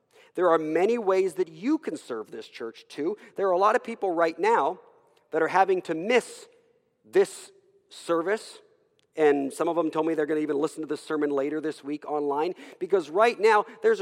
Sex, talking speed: male, 200 wpm